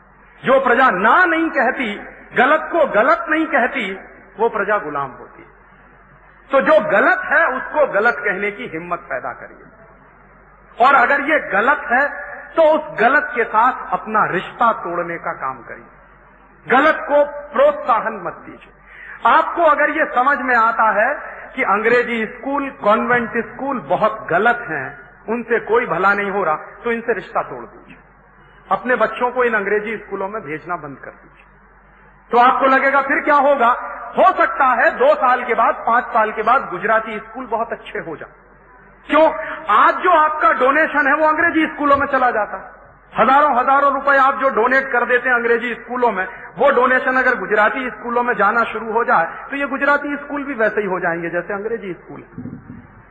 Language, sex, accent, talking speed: Hindi, male, native, 175 wpm